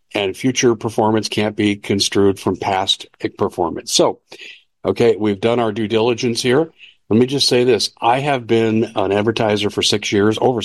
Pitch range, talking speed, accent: 105-130 Hz, 175 wpm, American